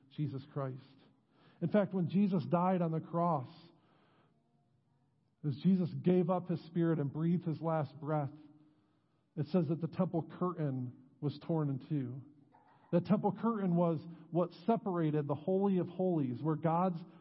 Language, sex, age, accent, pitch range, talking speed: English, male, 50-69, American, 145-175 Hz, 150 wpm